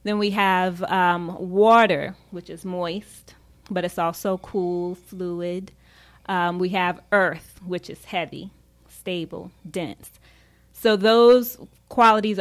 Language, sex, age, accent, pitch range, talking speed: English, female, 20-39, American, 165-200 Hz, 120 wpm